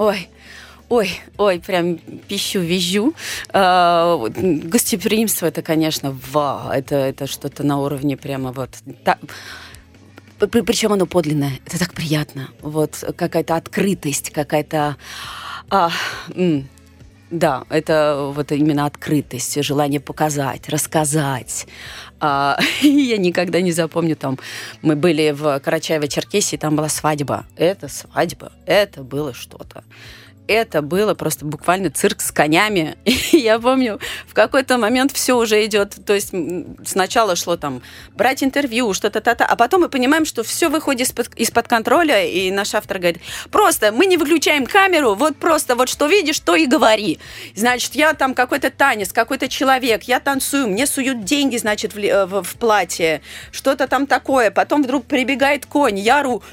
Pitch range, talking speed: 150-250 Hz, 140 wpm